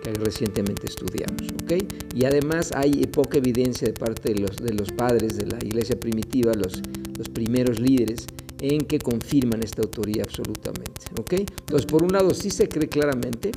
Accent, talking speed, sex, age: Mexican, 175 wpm, male, 50-69